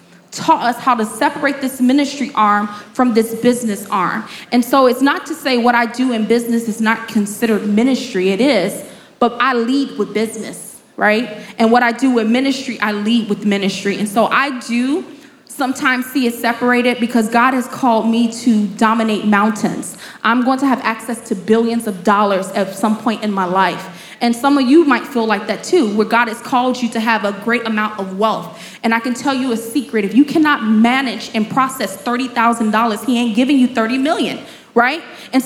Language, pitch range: English, 220-265 Hz